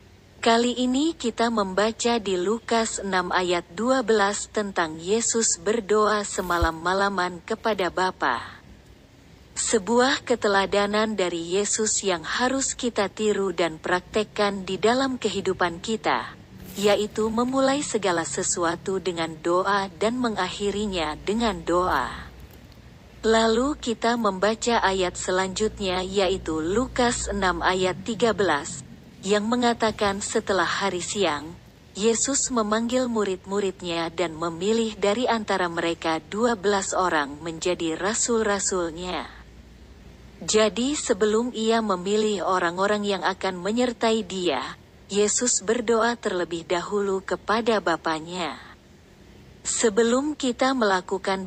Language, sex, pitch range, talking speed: Indonesian, female, 185-225 Hz, 100 wpm